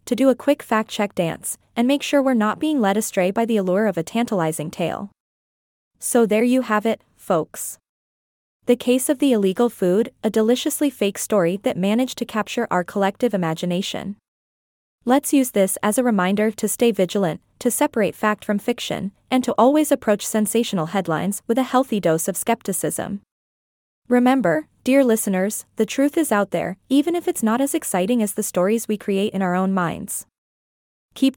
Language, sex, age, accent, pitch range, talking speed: English, female, 20-39, American, 195-250 Hz, 180 wpm